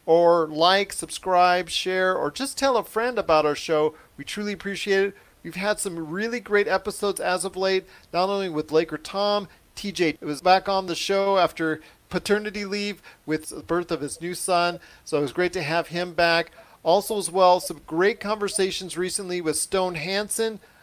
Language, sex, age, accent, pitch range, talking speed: English, male, 40-59, American, 155-195 Hz, 185 wpm